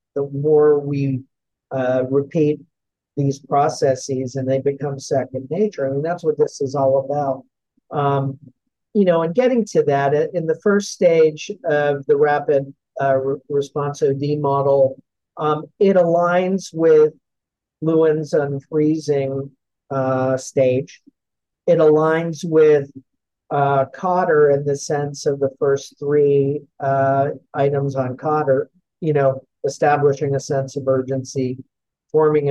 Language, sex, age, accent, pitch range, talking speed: English, male, 50-69, American, 135-155 Hz, 130 wpm